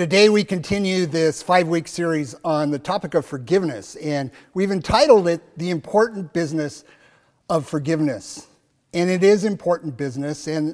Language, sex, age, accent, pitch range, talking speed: English, male, 50-69, American, 145-175 Hz, 145 wpm